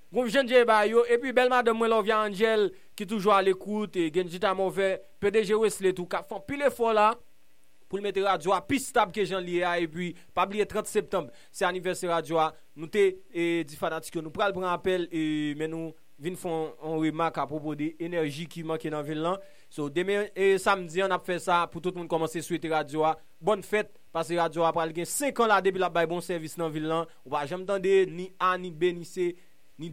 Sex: male